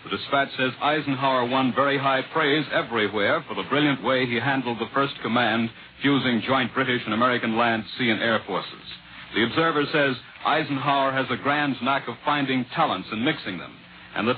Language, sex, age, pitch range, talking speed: English, male, 60-79, 120-150 Hz, 185 wpm